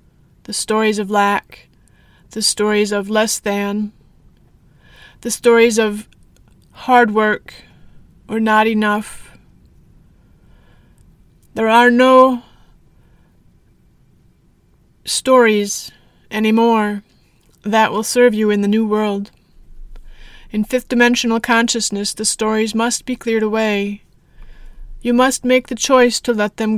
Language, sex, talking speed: English, female, 110 wpm